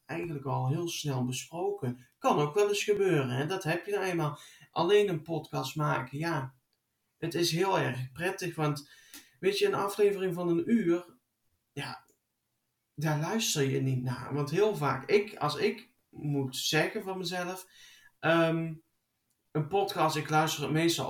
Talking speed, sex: 160 wpm, male